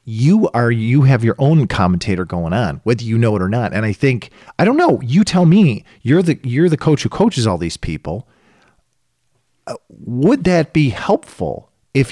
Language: English